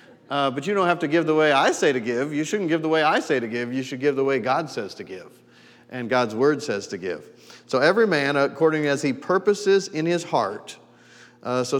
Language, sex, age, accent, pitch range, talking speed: English, male, 40-59, American, 125-150 Hz, 250 wpm